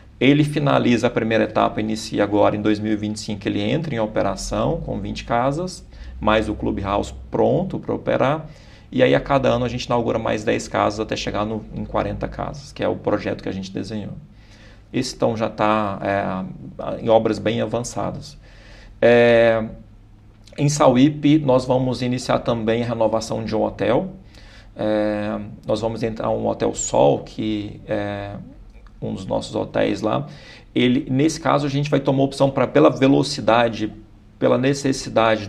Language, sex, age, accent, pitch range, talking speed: Portuguese, male, 40-59, Brazilian, 105-130 Hz, 165 wpm